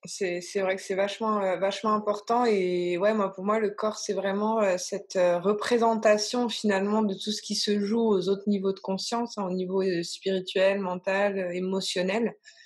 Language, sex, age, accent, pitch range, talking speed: French, female, 20-39, French, 180-215 Hz, 175 wpm